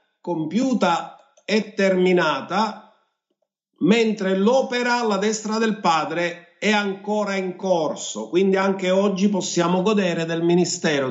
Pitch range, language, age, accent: 165-210 Hz, Italian, 50-69, native